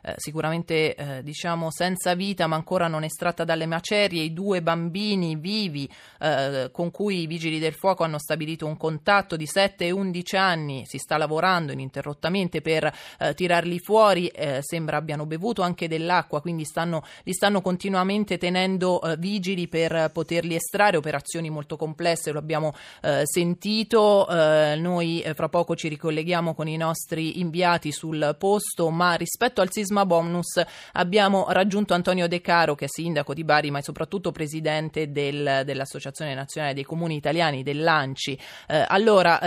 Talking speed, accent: 155 wpm, native